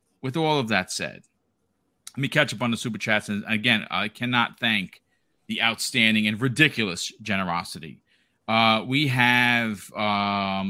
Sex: male